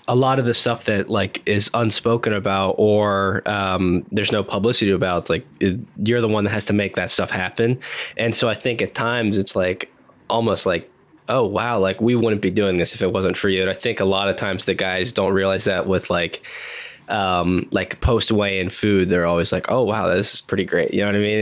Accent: American